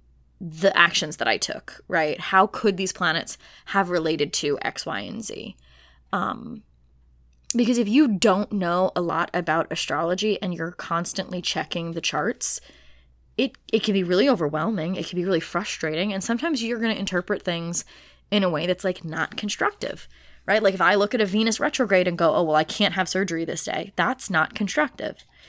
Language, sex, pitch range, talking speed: English, female, 160-210 Hz, 190 wpm